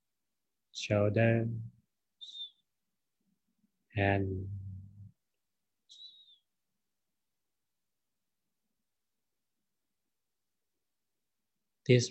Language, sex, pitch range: English, male, 100-115 Hz